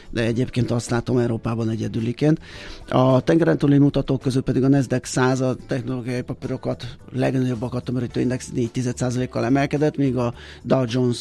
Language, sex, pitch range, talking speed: Hungarian, male, 115-135 Hz, 140 wpm